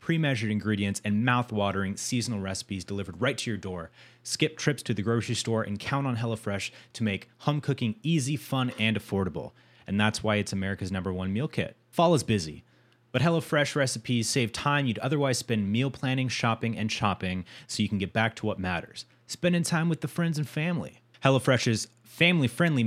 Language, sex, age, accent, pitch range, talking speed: English, male, 30-49, American, 105-130 Hz, 185 wpm